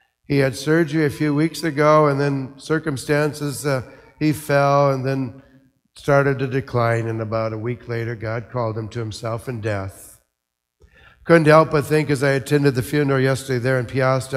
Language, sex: English, male